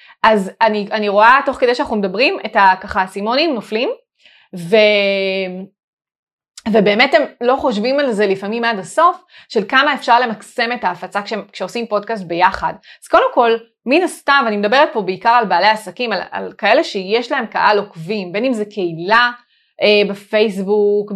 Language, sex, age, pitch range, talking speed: Hebrew, female, 20-39, 200-255 Hz, 165 wpm